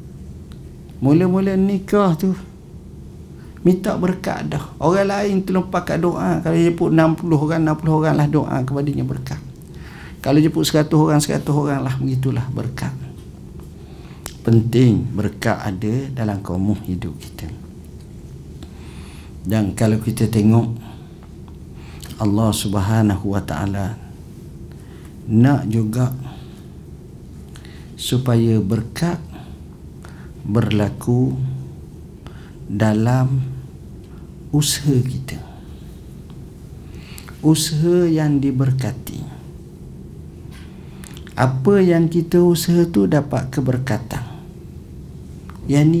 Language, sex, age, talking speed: Malay, male, 50-69, 85 wpm